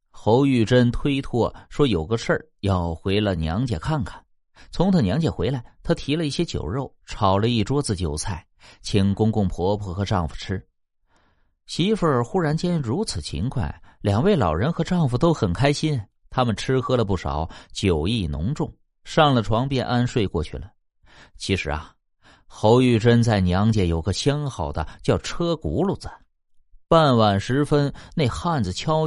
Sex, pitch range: male, 95-145 Hz